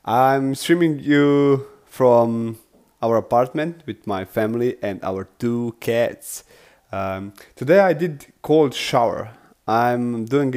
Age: 30-49